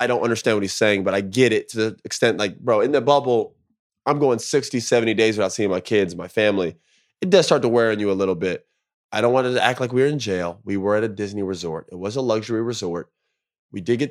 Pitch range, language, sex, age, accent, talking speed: 100-140 Hz, English, male, 20-39, American, 270 wpm